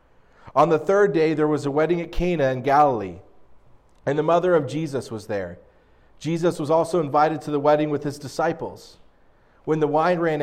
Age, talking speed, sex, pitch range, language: 40-59, 190 wpm, male, 115-155 Hz, English